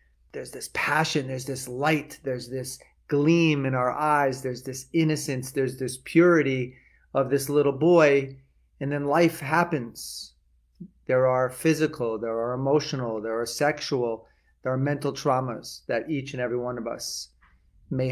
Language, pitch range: English, 120-140 Hz